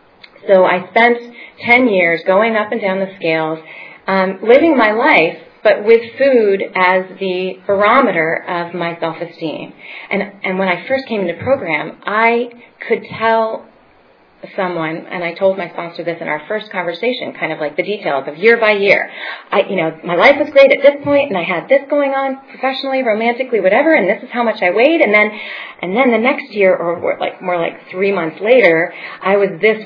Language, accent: English, American